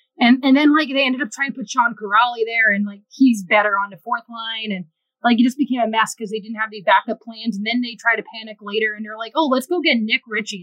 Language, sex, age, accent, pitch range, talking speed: English, female, 20-39, American, 205-260 Hz, 290 wpm